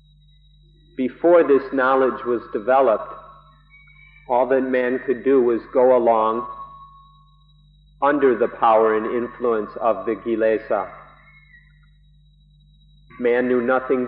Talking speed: 100 wpm